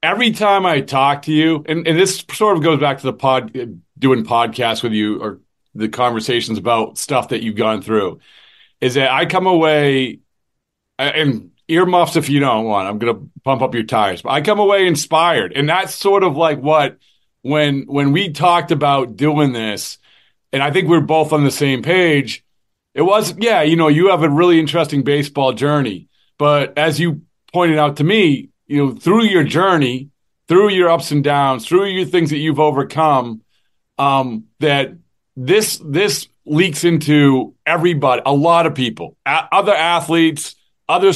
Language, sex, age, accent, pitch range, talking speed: English, male, 40-59, American, 135-175 Hz, 180 wpm